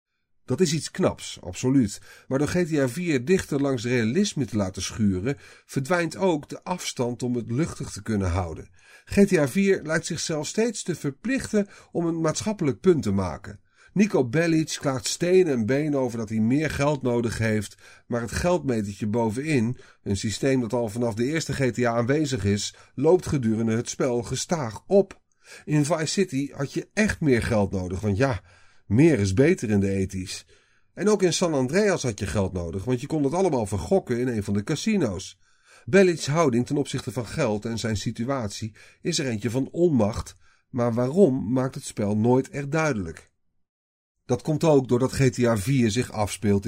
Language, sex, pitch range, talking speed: Dutch, male, 105-155 Hz, 175 wpm